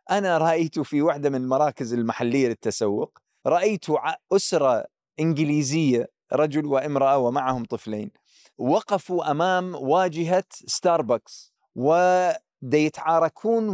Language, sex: Arabic, male